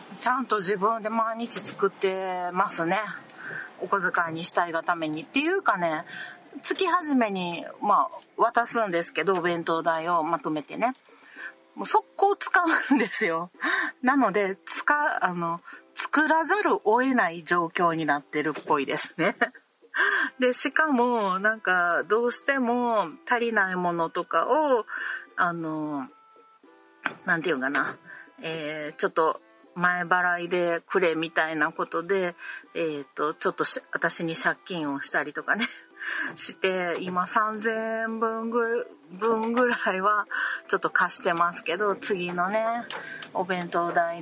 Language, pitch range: Japanese, 170-250 Hz